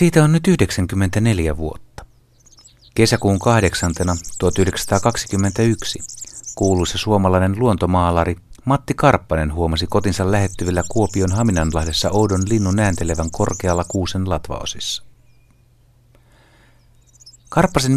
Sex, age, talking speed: male, 60-79, 85 wpm